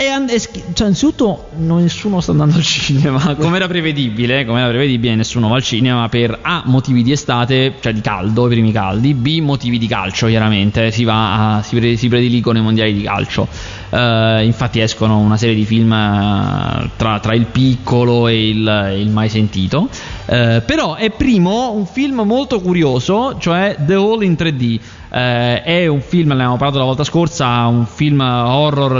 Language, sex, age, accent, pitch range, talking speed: Italian, male, 20-39, native, 115-150 Hz, 185 wpm